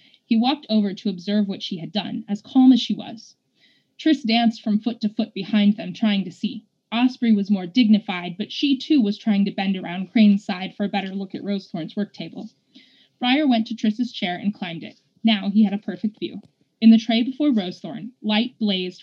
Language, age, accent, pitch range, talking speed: English, 20-39, American, 200-240 Hz, 215 wpm